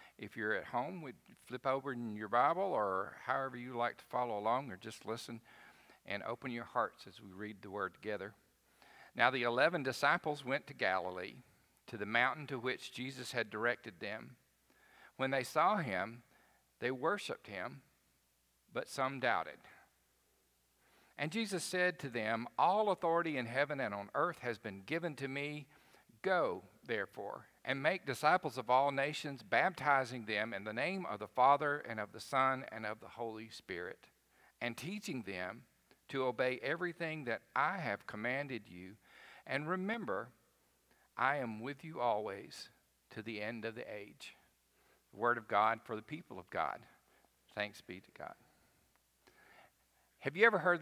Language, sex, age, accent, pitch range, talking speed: English, male, 50-69, American, 110-140 Hz, 165 wpm